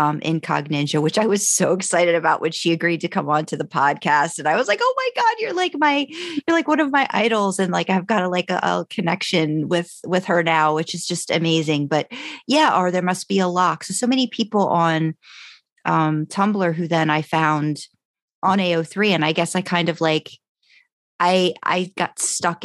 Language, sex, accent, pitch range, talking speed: English, female, American, 155-190 Hz, 215 wpm